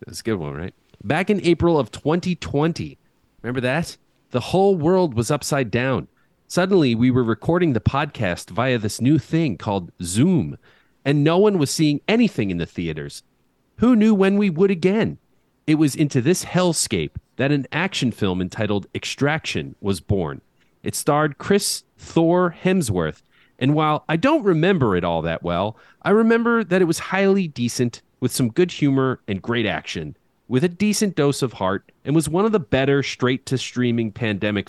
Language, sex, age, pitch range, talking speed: English, male, 40-59, 115-165 Hz, 175 wpm